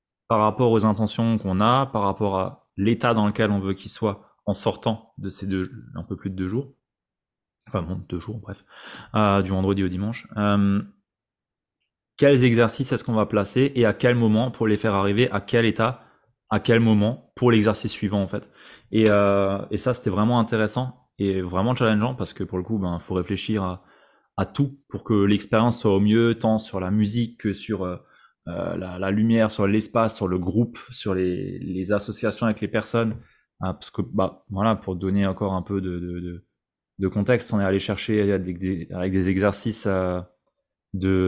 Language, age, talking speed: French, 20-39, 190 wpm